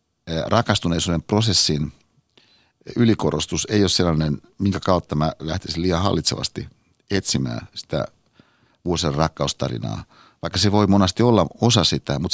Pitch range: 80-100 Hz